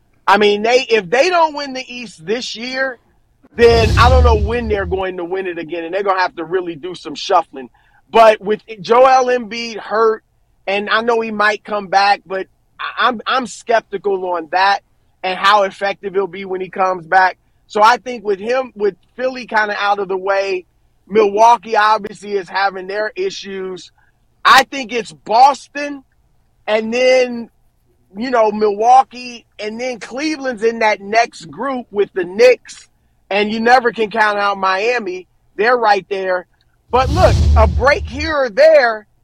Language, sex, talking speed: English, male, 175 wpm